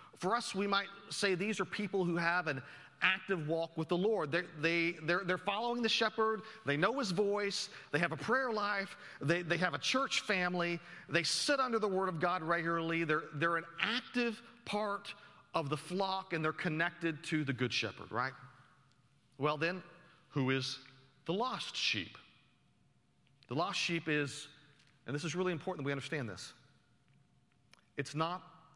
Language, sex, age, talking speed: English, male, 40-59, 175 wpm